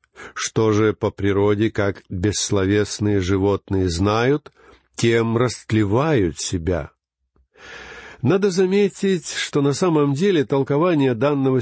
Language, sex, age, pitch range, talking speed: Russian, male, 60-79, 105-150 Hz, 100 wpm